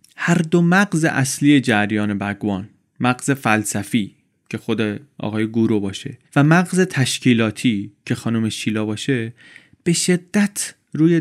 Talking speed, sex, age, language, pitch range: 125 wpm, male, 30-49, Persian, 115-145 Hz